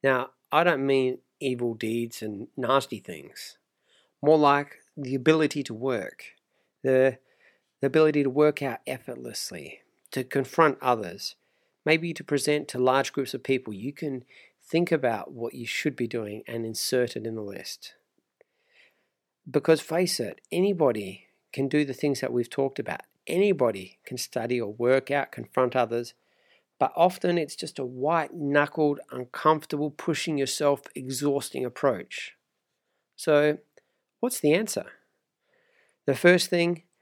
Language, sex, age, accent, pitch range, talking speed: English, male, 40-59, Australian, 125-160 Hz, 140 wpm